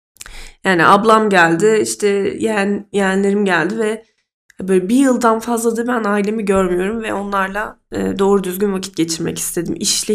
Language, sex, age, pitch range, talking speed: Turkish, female, 10-29, 185-215 Hz, 150 wpm